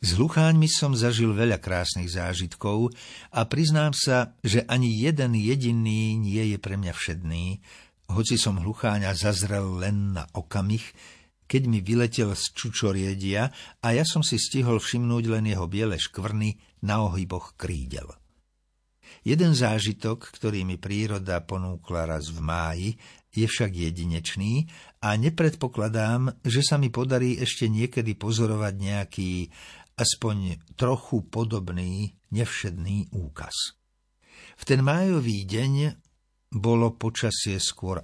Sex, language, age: male, Slovak, 60-79